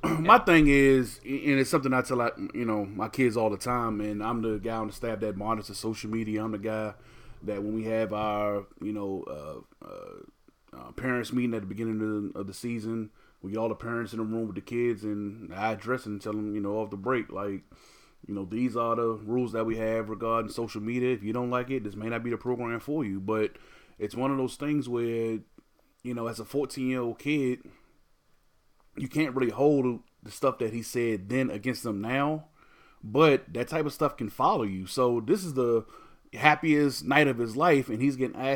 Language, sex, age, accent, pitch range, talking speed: English, male, 20-39, American, 110-135 Hz, 230 wpm